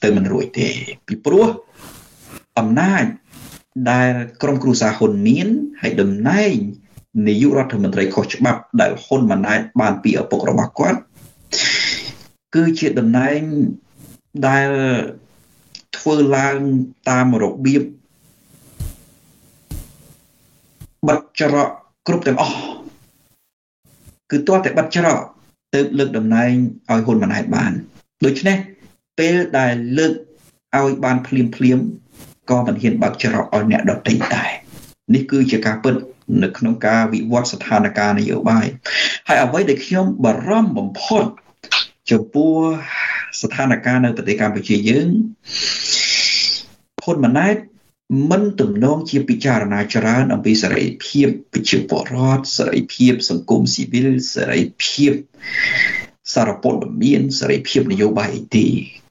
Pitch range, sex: 125-175 Hz, male